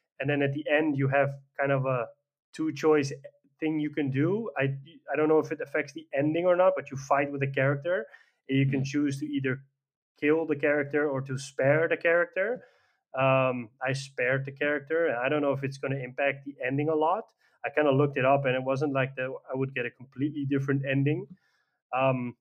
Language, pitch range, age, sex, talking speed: English, 130-150 Hz, 20-39, male, 220 wpm